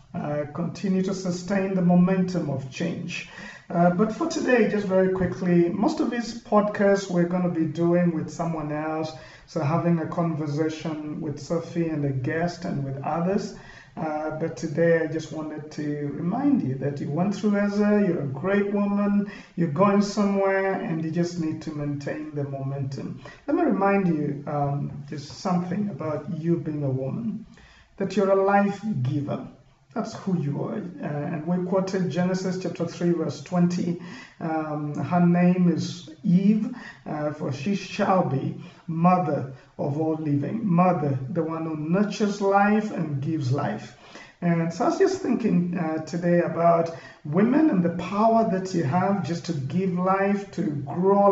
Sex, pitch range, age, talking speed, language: male, 155-195 Hz, 50-69, 170 wpm, English